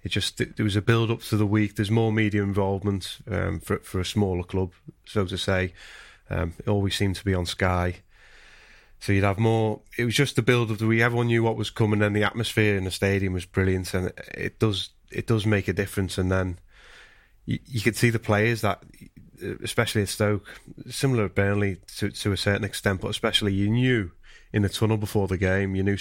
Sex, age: male, 30-49